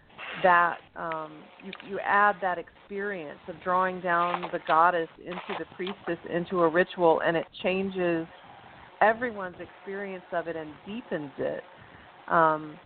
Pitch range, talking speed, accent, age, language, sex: 165-190 Hz, 135 wpm, American, 40-59, English, female